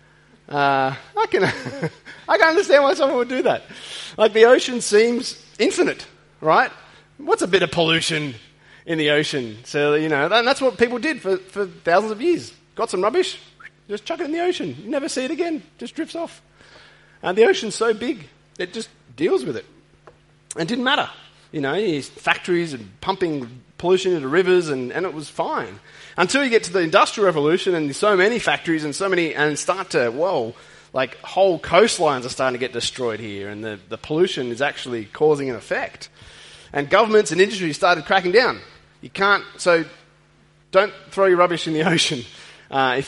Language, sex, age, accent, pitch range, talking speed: English, male, 30-49, Australian, 150-235 Hz, 195 wpm